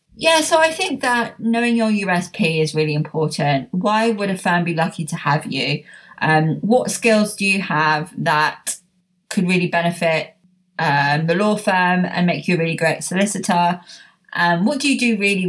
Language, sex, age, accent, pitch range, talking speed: English, female, 20-39, British, 175-220 Hz, 180 wpm